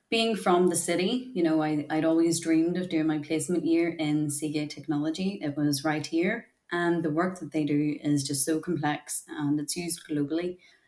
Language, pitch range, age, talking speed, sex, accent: English, 155-180 Hz, 20-39, 195 wpm, female, Irish